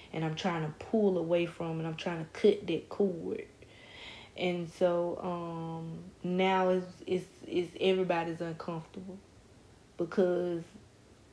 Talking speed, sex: 125 wpm, female